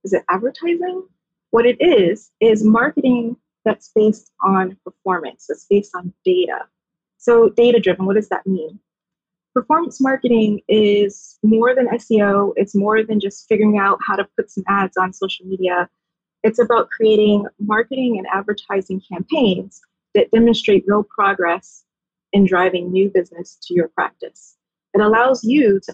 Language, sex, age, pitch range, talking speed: English, female, 30-49, 185-230 Hz, 150 wpm